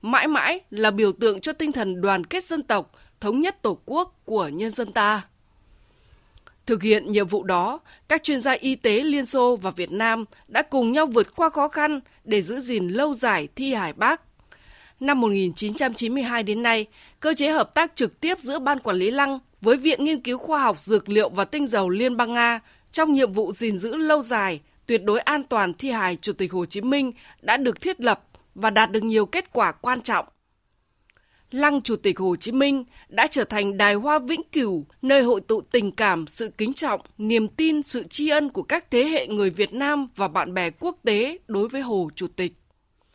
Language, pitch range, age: Vietnamese, 210-295 Hz, 20-39